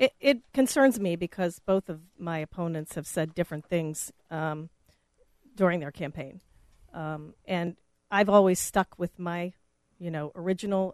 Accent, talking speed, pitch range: American, 150 wpm, 165-200 Hz